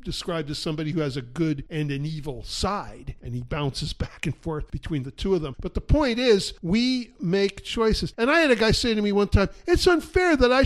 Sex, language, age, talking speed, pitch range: male, English, 50-69, 240 wpm, 170-230 Hz